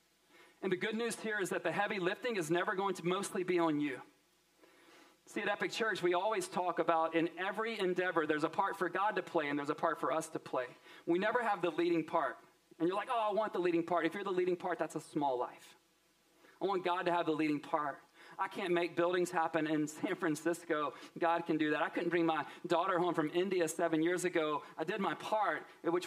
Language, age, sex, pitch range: English, 40-59, male, 165-185 Hz